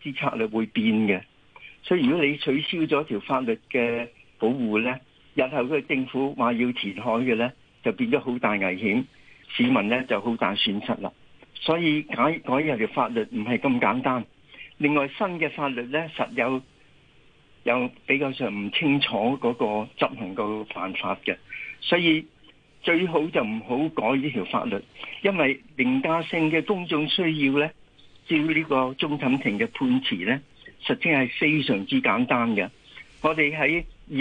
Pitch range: 125-170 Hz